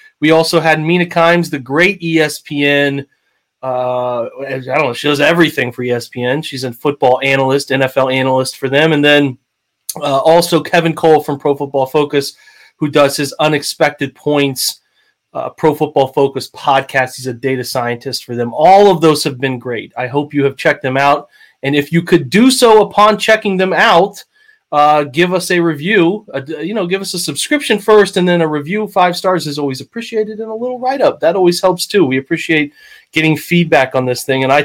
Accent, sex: American, male